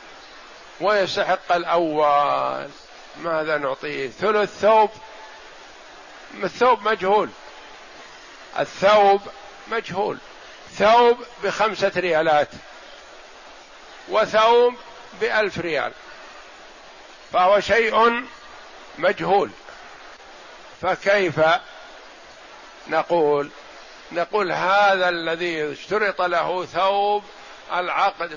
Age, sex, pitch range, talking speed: 50-69, male, 165-205 Hz, 60 wpm